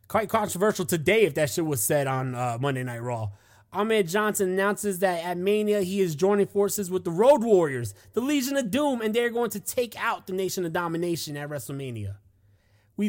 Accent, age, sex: American, 20-39, male